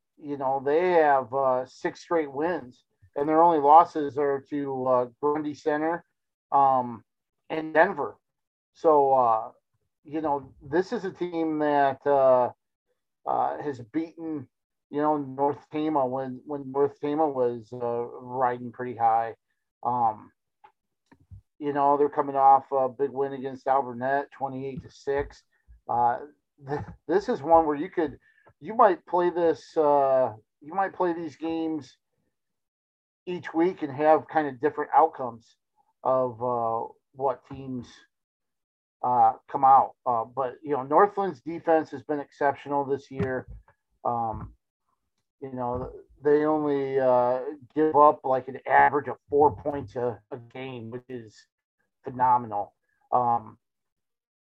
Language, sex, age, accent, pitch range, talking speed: English, male, 50-69, American, 125-155 Hz, 135 wpm